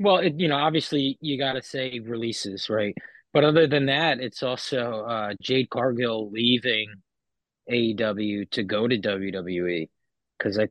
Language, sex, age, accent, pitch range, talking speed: English, male, 20-39, American, 110-135 Hz, 150 wpm